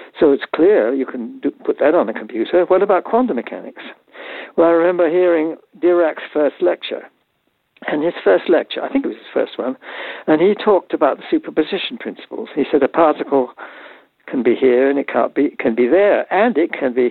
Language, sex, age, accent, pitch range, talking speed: English, male, 60-79, British, 150-235 Hz, 205 wpm